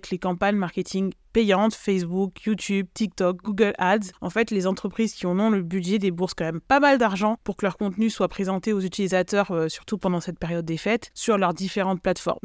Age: 20-39